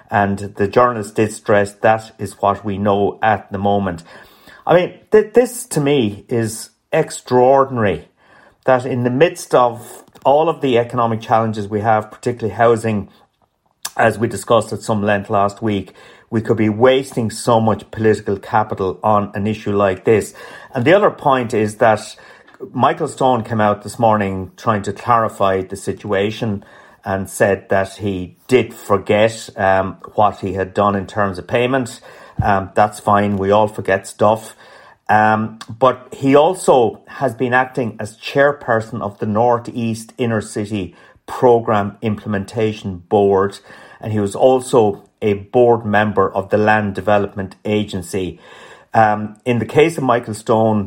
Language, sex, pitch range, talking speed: English, male, 100-120 Hz, 155 wpm